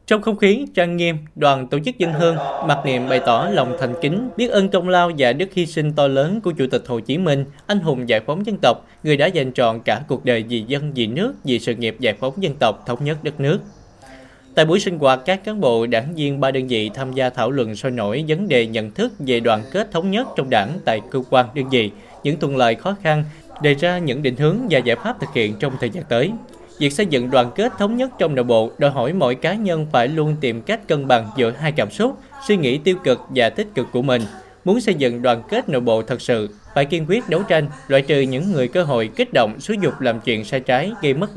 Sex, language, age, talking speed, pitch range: male, Vietnamese, 20-39, 260 wpm, 125-185 Hz